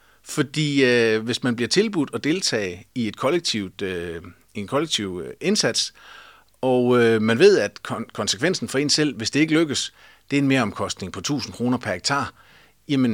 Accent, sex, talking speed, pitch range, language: native, male, 185 wpm, 105-140 Hz, Danish